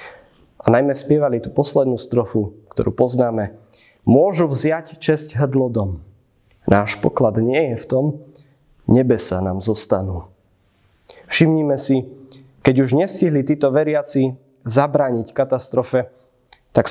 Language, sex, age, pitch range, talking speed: Slovak, male, 20-39, 115-145 Hz, 115 wpm